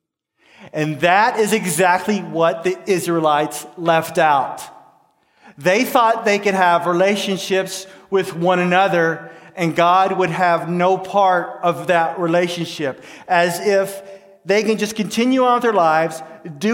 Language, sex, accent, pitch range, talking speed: English, male, American, 165-195 Hz, 135 wpm